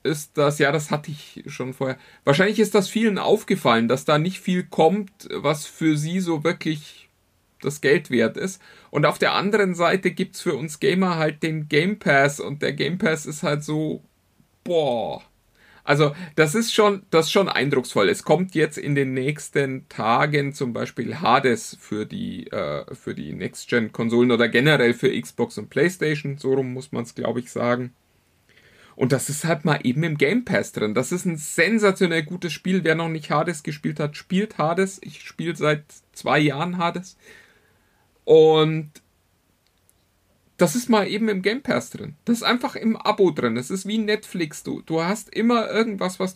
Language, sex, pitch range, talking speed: German, male, 140-190 Hz, 185 wpm